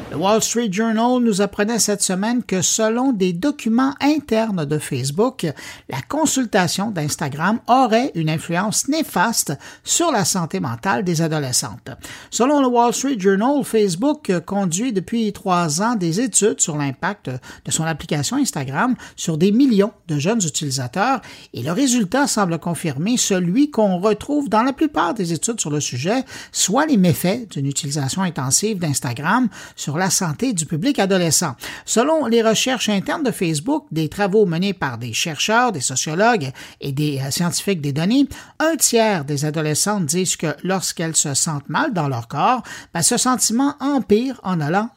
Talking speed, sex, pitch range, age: 160 wpm, male, 160-230 Hz, 50-69